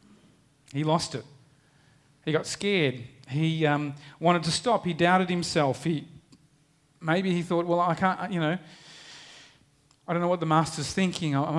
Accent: Australian